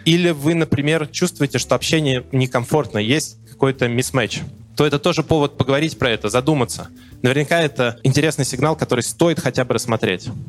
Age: 20-39